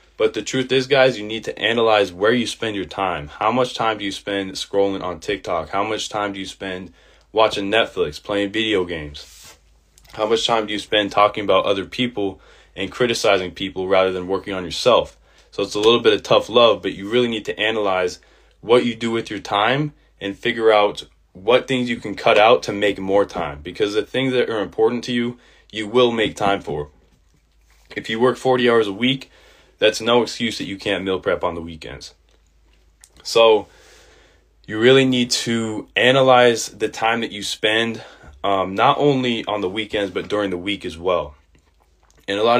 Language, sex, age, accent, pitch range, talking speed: English, male, 20-39, American, 95-115 Hz, 200 wpm